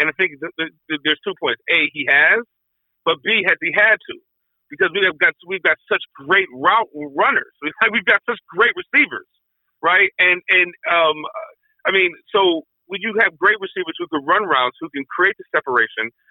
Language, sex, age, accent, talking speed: English, male, 50-69, American, 205 wpm